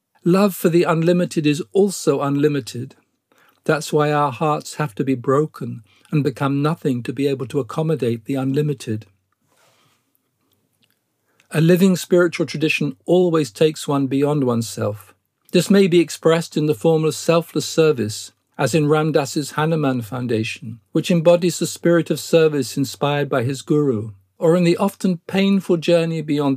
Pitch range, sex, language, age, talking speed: 130-170 Hz, male, English, 50-69, 150 wpm